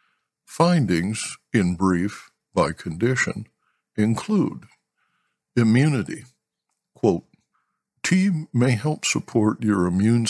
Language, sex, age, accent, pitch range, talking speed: English, male, 60-79, American, 90-120 Hz, 80 wpm